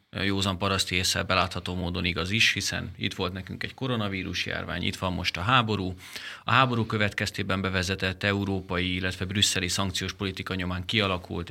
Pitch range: 95-115 Hz